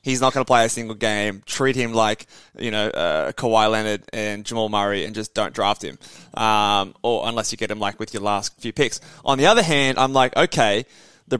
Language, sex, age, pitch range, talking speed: English, male, 20-39, 115-155 Hz, 230 wpm